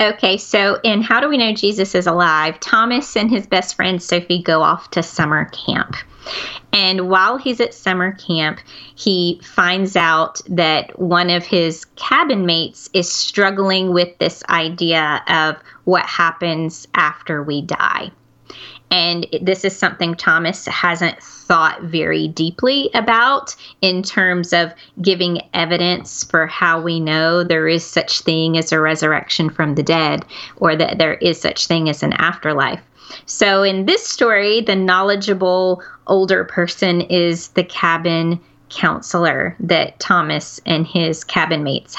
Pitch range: 165-190 Hz